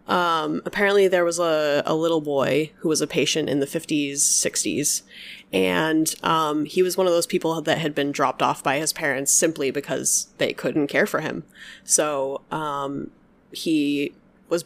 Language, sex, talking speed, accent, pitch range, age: English, female, 175 wpm, American, 145-170 Hz, 20-39